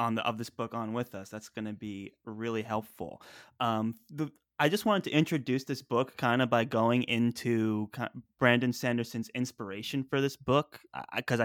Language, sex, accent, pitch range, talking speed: English, male, American, 110-125 Hz, 195 wpm